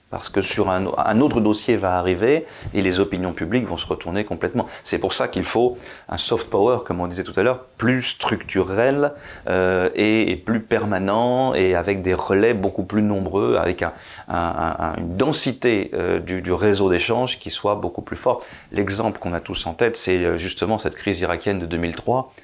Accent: French